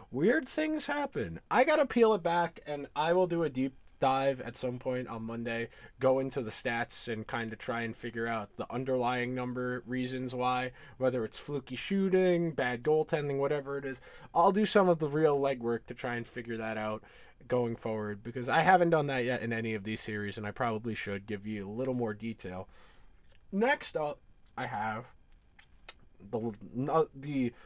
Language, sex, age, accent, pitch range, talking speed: English, male, 20-39, American, 115-165 Hz, 190 wpm